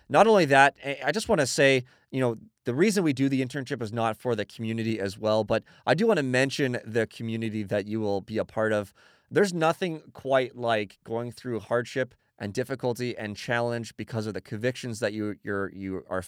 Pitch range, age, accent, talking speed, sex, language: 105-130 Hz, 30-49, American, 215 wpm, male, English